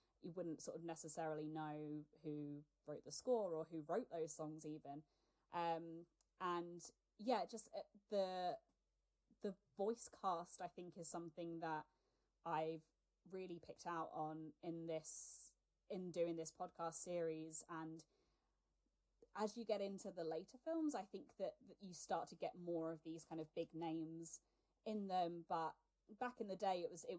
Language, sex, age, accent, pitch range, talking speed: English, female, 20-39, British, 160-190 Hz, 165 wpm